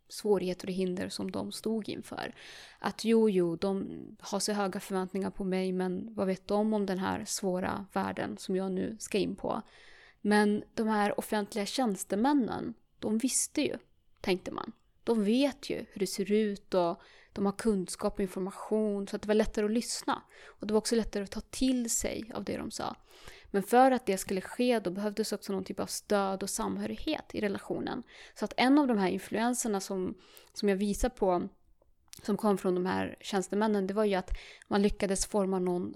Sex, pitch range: female, 190-220 Hz